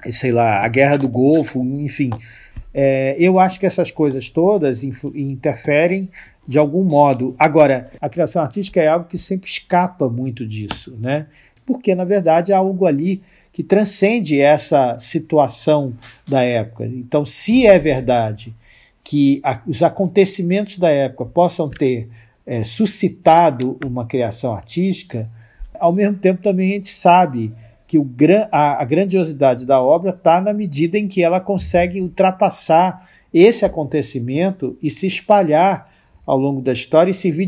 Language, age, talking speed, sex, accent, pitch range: Portuguese, 50-69, 145 wpm, male, Brazilian, 130-185 Hz